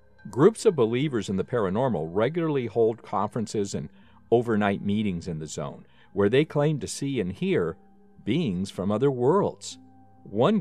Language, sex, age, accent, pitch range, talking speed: English, male, 50-69, American, 100-135 Hz, 155 wpm